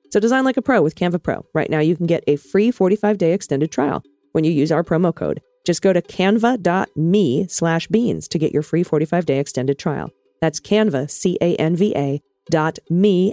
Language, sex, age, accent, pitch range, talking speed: English, female, 40-59, American, 155-200 Hz, 190 wpm